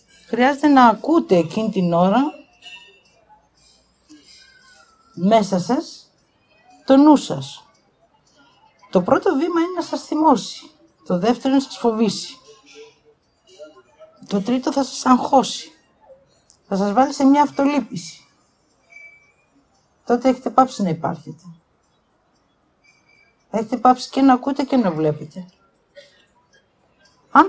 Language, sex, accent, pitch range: English, female, Greek, 190-300 Hz